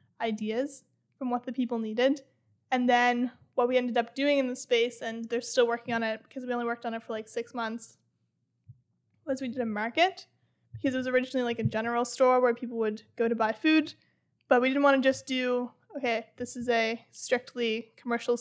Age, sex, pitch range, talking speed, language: 20-39, female, 235-265 Hz, 210 wpm, English